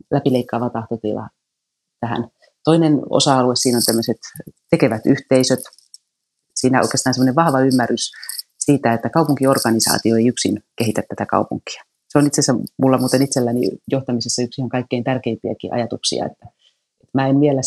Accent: native